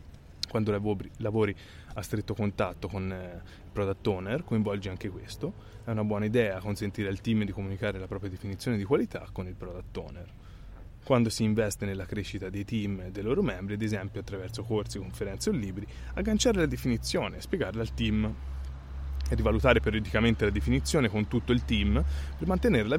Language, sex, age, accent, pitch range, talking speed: Italian, male, 20-39, native, 95-115 Hz, 170 wpm